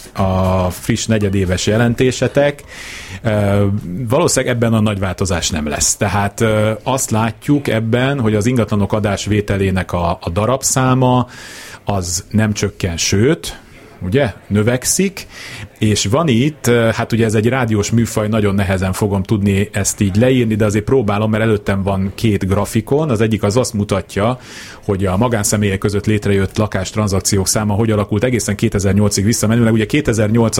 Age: 30-49